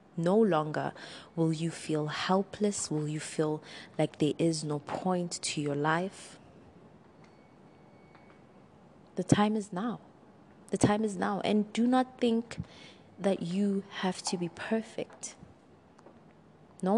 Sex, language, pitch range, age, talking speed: female, English, 155-195 Hz, 20-39, 125 wpm